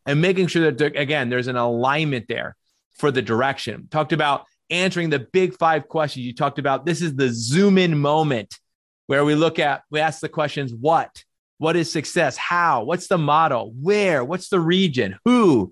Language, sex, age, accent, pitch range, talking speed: English, male, 30-49, American, 120-150 Hz, 185 wpm